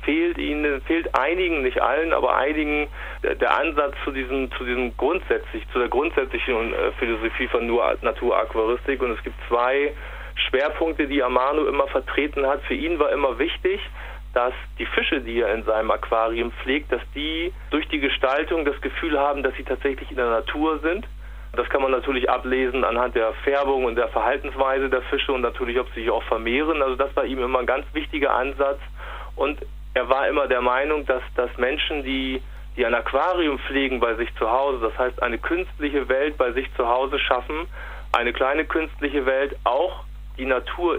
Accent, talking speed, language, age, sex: German, 185 wpm, German, 30-49, male